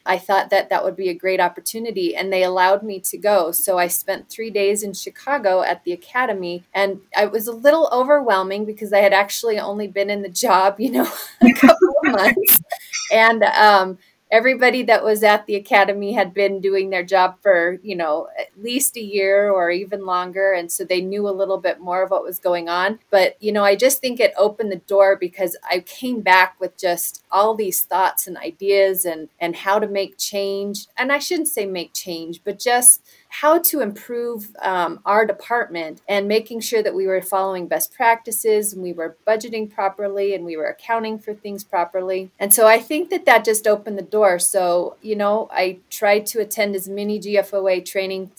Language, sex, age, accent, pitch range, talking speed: English, female, 30-49, American, 185-220 Hz, 205 wpm